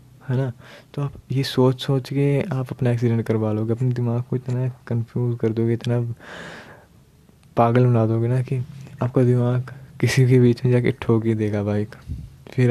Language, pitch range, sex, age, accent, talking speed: Hindi, 115-135 Hz, male, 20-39, native, 185 wpm